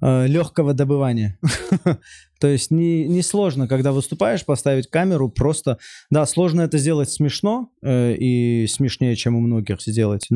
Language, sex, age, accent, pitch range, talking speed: Russian, male, 20-39, native, 115-155 Hz, 140 wpm